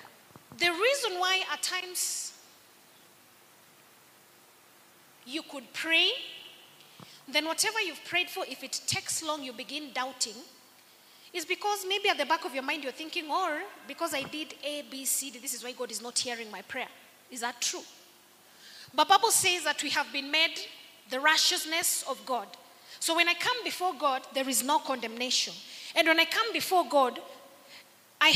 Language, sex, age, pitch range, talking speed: English, female, 20-39, 260-360 Hz, 170 wpm